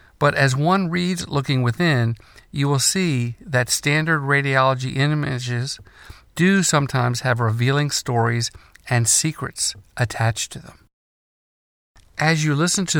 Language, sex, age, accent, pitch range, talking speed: English, male, 50-69, American, 115-145 Hz, 125 wpm